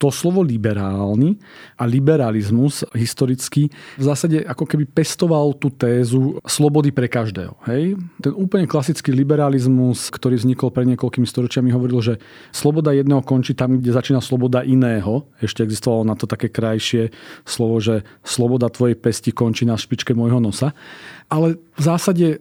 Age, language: 40-59, Slovak